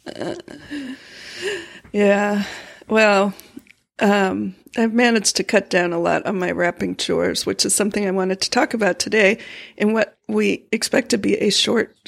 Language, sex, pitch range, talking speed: English, female, 195-245 Hz, 160 wpm